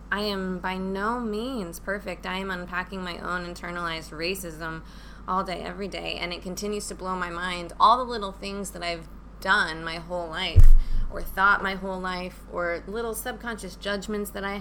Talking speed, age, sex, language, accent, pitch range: 185 wpm, 20-39, female, English, American, 180-215 Hz